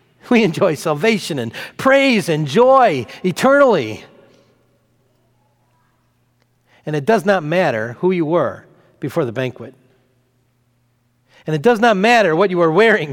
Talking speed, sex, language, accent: 130 wpm, male, English, American